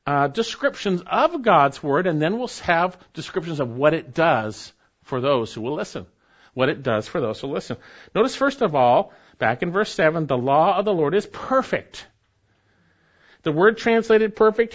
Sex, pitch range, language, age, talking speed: male, 145-235 Hz, English, 50-69, 185 wpm